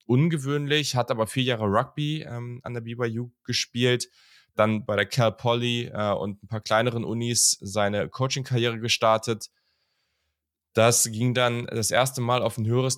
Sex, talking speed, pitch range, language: male, 155 wpm, 100-120 Hz, German